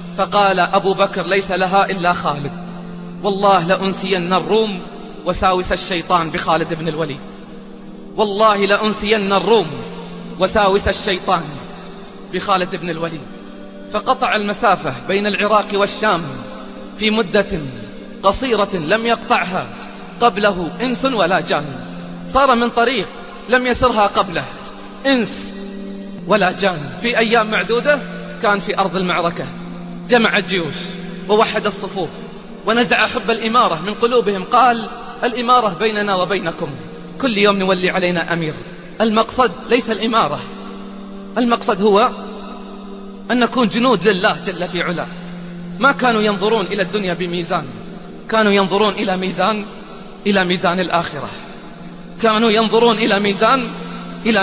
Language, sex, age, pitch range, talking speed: Arabic, male, 30-49, 180-220 Hz, 110 wpm